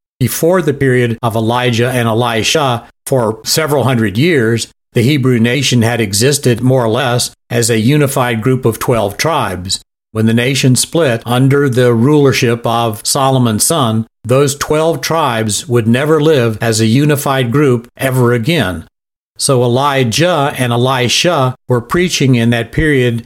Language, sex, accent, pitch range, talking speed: English, male, American, 115-140 Hz, 145 wpm